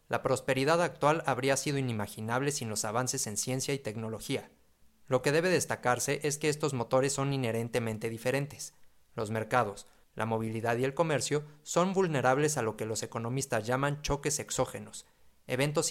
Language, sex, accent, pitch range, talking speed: Spanish, male, Mexican, 115-145 Hz, 160 wpm